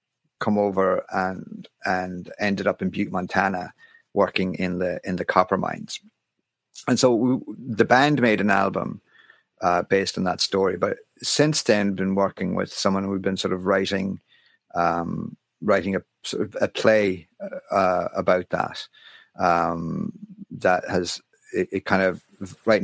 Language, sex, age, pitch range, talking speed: English, male, 50-69, 95-125 Hz, 160 wpm